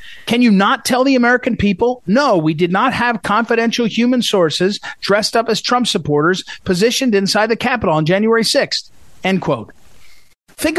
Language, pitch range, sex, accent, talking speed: English, 195-255 Hz, male, American, 165 wpm